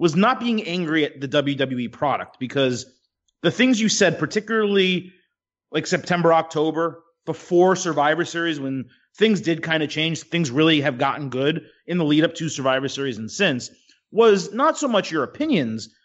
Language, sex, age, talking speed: English, male, 30-49, 170 wpm